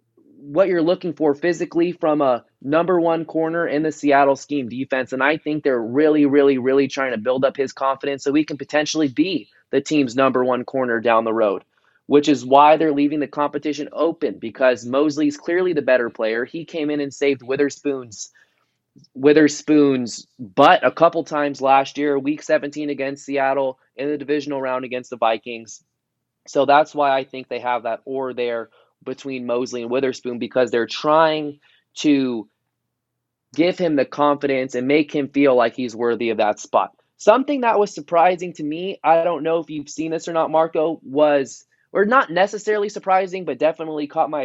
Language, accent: English, American